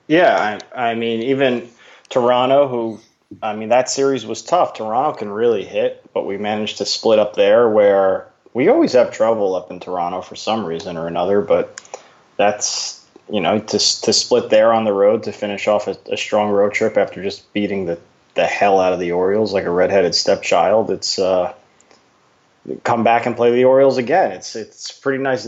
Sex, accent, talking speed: male, American, 200 wpm